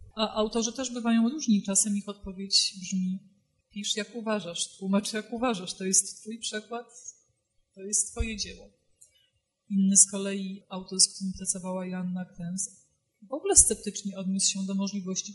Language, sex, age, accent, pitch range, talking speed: Polish, female, 30-49, native, 190-220 Hz, 155 wpm